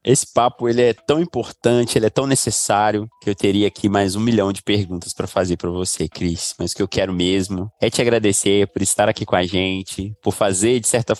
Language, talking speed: Portuguese, 230 wpm